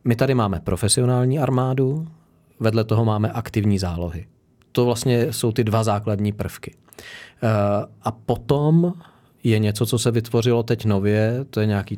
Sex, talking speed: male, 145 wpm